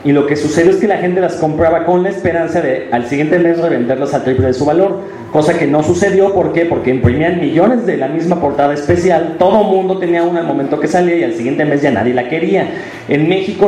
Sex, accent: male, Mexican